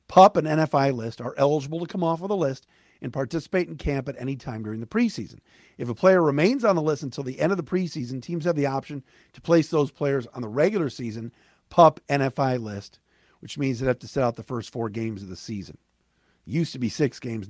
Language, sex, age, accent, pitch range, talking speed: English, male, 50-69, American, 120-175 Hz, 235 wpm